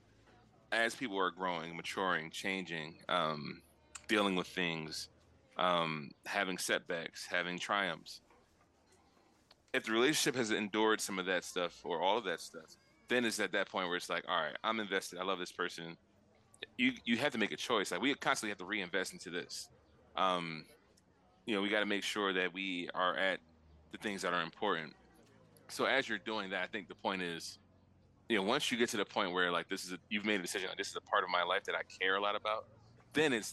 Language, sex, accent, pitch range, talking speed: English, male, American, 90-105 Hz, 215 wpm